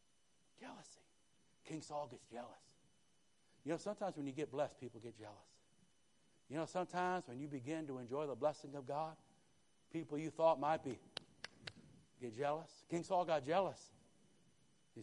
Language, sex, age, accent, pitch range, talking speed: English, male, 60-79, American, 135-180 Hz, 155 wpm